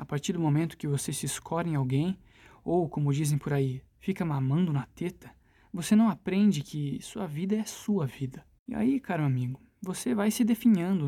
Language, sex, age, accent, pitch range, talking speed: Portuguese, male, 20-39, Brazilian, 140-200 Hz, 195 wpm